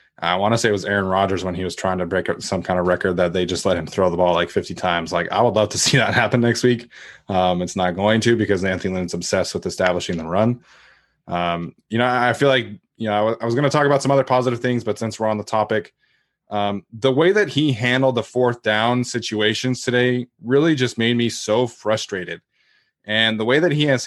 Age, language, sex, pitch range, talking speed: 20-39, English, male, 100-125 Hz, 250 wpm